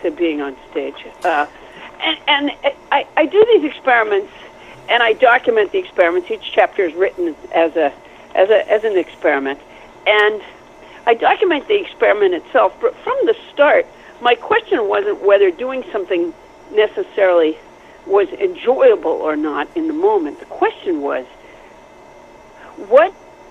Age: 60-79